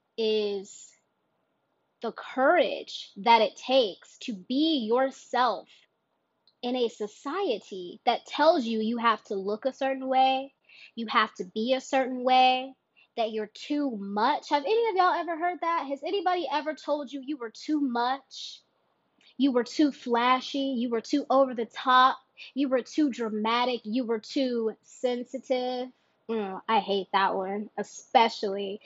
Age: 20-39